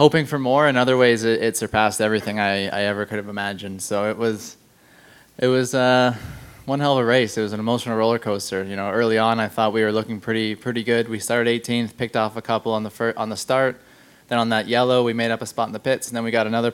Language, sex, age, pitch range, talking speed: English, male, 20-39, 110-125 Hz, 270 wpm